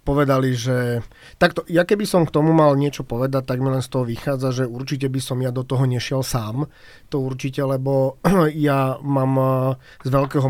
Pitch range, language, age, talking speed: 130-145 Hz, Slovak, 30-49, 190 wpm